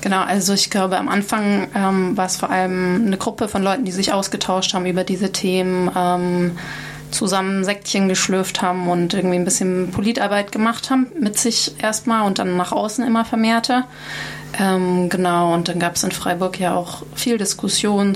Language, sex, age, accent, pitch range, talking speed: German, female, 20-39, German, 180-205 Hz, 180 wpm